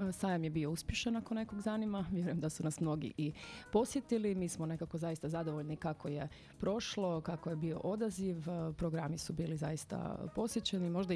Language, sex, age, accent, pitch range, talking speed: Croatian, female, 30-49, native, 160-190 Hz, 170 wpm